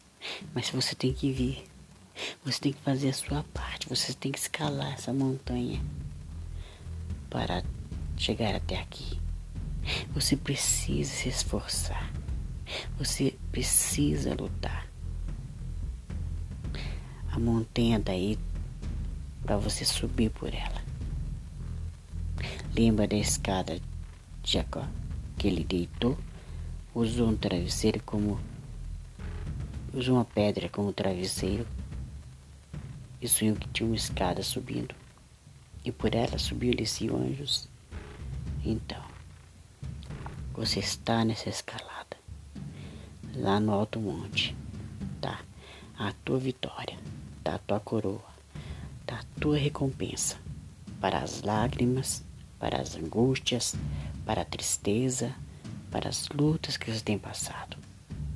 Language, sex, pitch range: Portuguese, female, 80-115 Hz